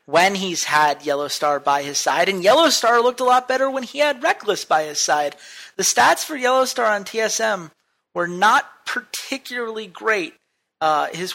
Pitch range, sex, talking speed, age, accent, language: 160-220 Hz, male, 170 wpm, 30-49, American, English